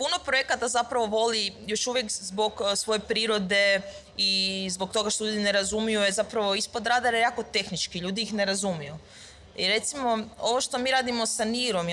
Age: 20-39